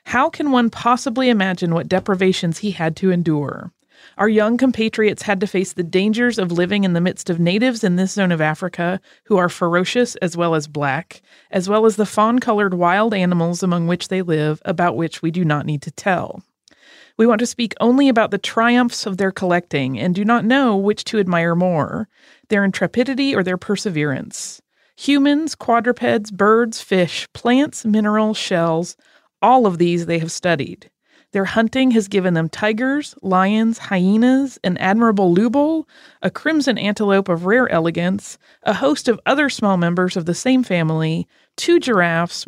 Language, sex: English, female